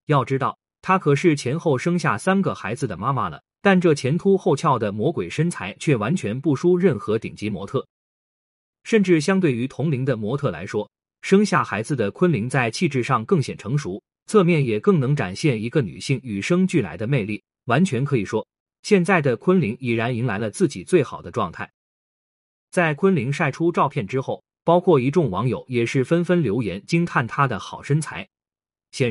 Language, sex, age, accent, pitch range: Chinese, male, 20-39, native, 125-175 Hz